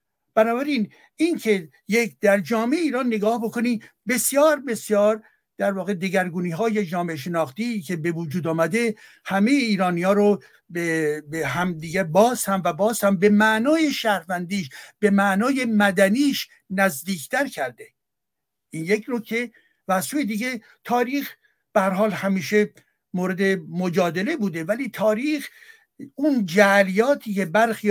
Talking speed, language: 125 wpm, Persian